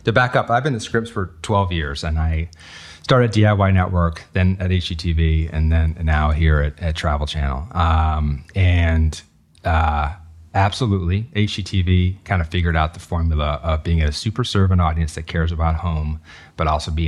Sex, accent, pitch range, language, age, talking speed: male, American, 80-95 Hz, English, 30-49, 175 wpm